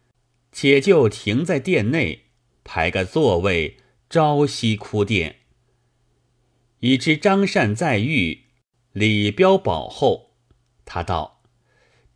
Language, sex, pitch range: Chinese, male, 105-130 Hz